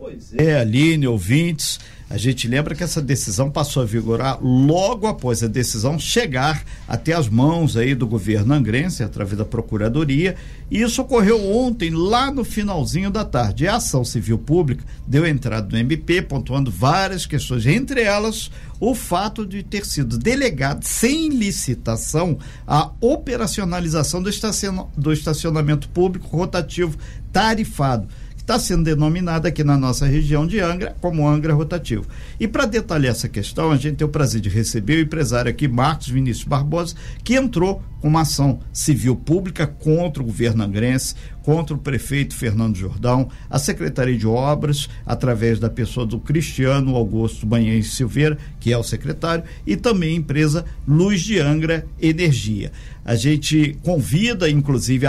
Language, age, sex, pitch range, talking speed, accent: Portuguese, 50-69, male, 125-170 Hz, 150 wpm, Brazilian